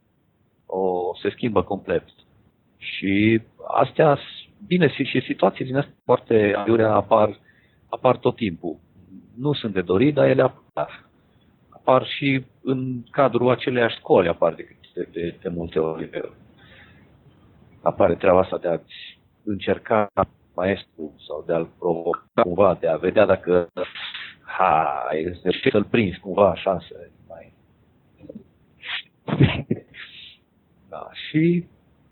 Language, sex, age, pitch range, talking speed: Romanian, male, 50-69, 95-125 Hz, 110 wpm